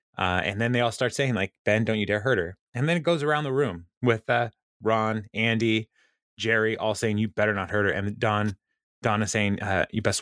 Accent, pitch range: American, 100-120 Hz